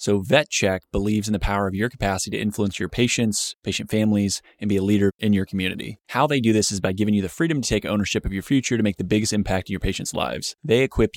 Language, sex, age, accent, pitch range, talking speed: English, male, 20-39, American, 100-115 Hz, 265 wpm